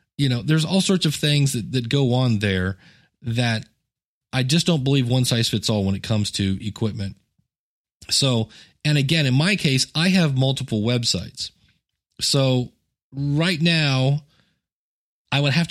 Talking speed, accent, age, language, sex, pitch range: 160 wpm, American, 30-49, English, male, 110-145 Hz